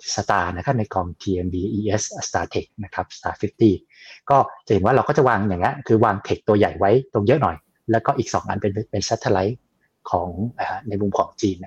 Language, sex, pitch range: Thai, male, 95-115 Hz